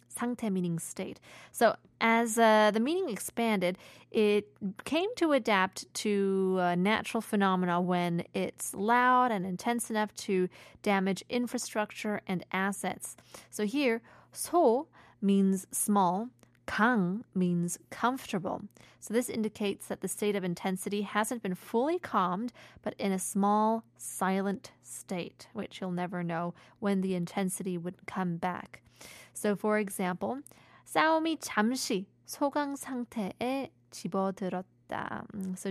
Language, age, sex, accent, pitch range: Korean, 20-39, female, American, 185-230 Hz